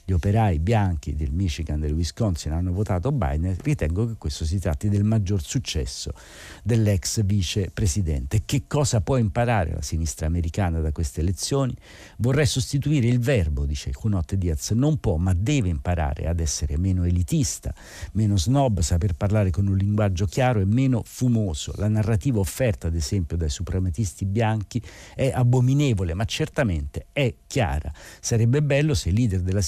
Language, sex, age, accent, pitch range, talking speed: Italian, male, 50-69, native, 85-115 Hz, 160 wpm